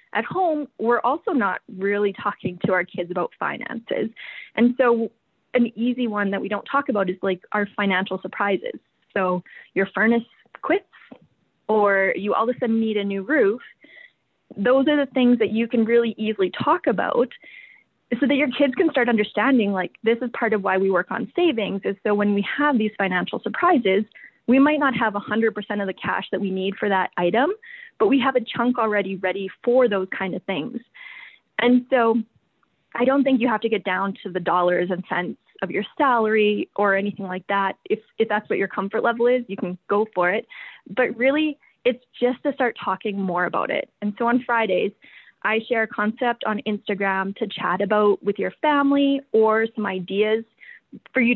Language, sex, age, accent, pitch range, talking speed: English, female, 20-39, American, 195-250 Hz, 200 wpm